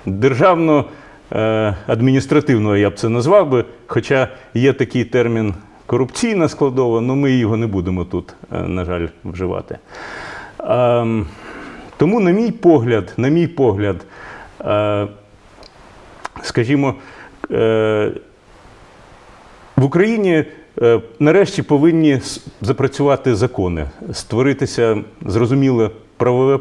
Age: 40-59